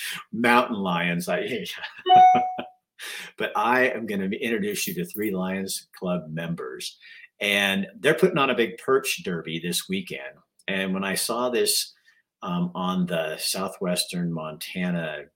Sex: male